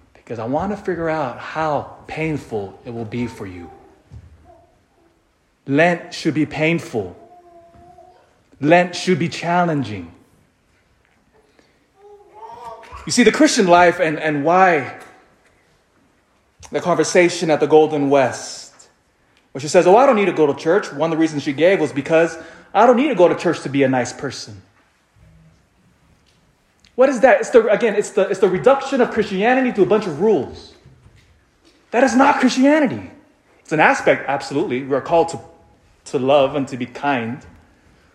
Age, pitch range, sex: 30-49, 140-210 Hz, male